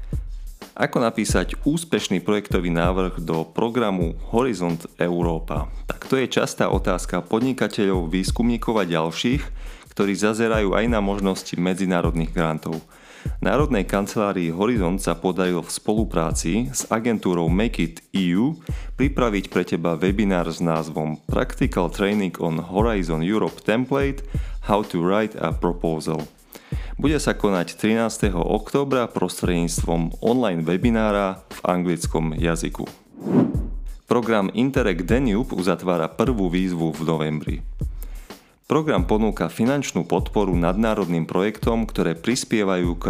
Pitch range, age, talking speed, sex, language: 85-105 Hz, 30-49, 115 wpm, male, Slovak